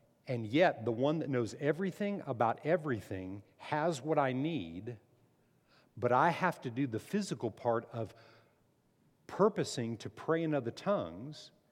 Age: 50-69